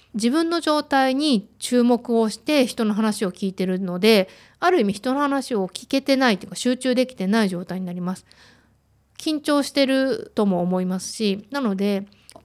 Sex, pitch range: female, 190-265 Hz